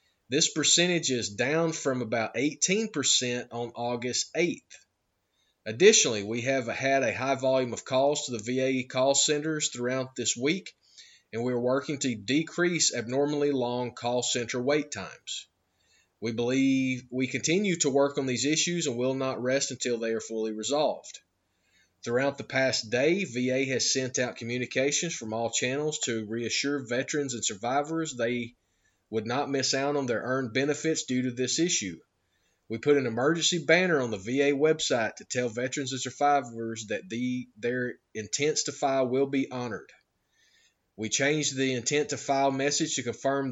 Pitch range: 120-145 Hz